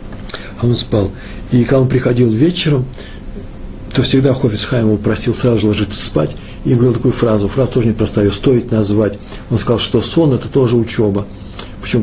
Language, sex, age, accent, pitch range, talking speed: Russian, male, 60-79, native, 105-135 Hz, 175 wpm